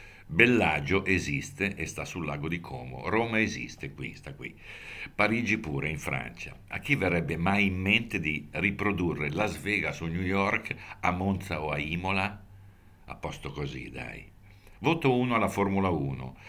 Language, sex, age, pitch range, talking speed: Italian, male, 60-79, 85-110 Hz, 160 wpm